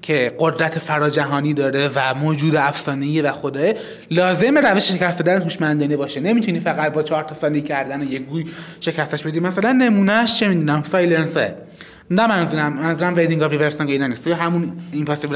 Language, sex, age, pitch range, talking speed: Persian, male, 20-39, 150-195 Hz, 160 wpm